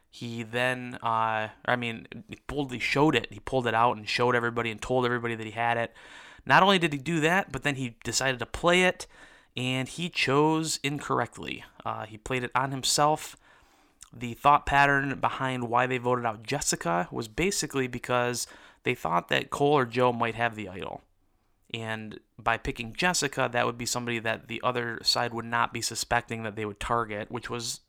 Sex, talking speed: male, 190 wpm